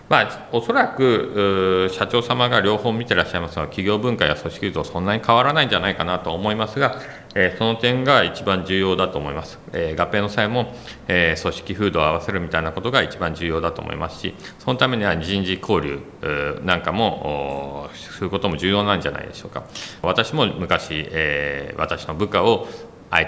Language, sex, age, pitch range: Japanese, male, 40-59, 80-110 Hz